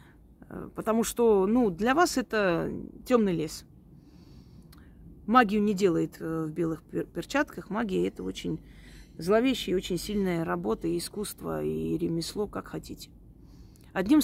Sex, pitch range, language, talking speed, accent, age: female, 170-225 Hz, Russian, 120 wpm, native, 30-49